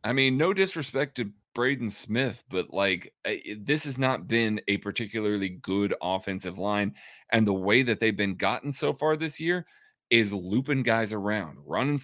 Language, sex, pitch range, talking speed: English, male, 100-130 Hz, 170 wpm